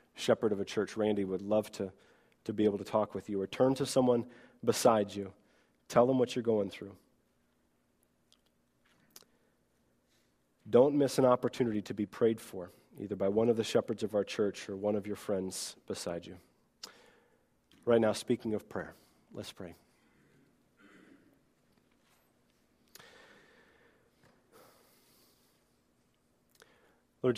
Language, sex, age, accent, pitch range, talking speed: English, male, 30-49, American, 100-120 Hz, 130 wpm